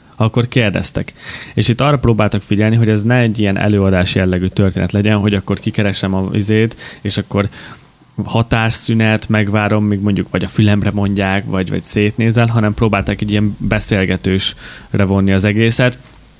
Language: Hungarian